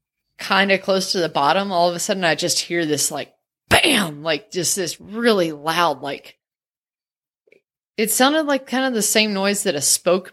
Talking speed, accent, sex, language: 190 wpm, American, female, English